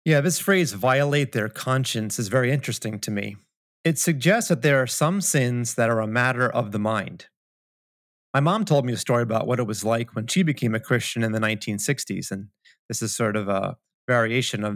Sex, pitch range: male, 110-140 Hz